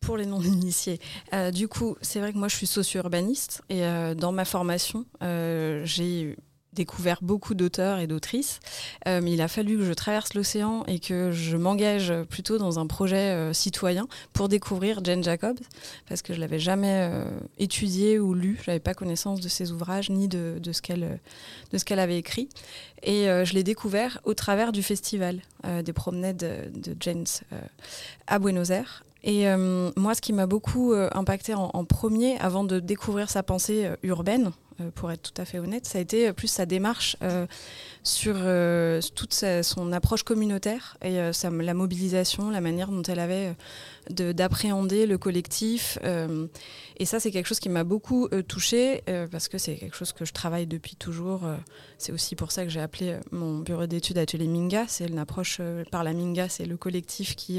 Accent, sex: French, female